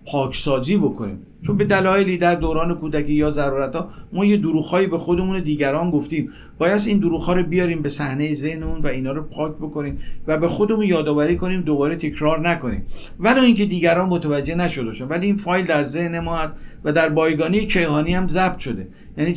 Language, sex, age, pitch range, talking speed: Persian, male, 50-69, 140-180 Hz, 180 wpm